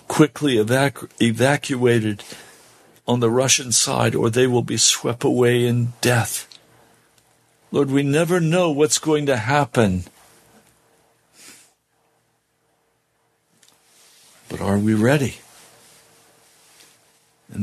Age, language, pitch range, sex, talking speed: 60-79, English, 115-145 Hz, male, 90 wpm